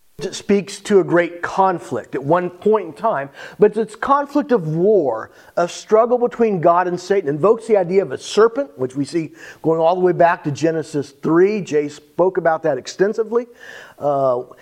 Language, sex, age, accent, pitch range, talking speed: English, male, 50-69, American, 170-220 Hz, 185 wpm